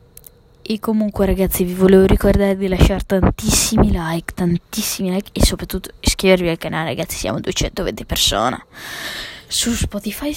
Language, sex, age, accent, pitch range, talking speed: Italian, female, 20-39, native, 180-210 Hz, 135 wpm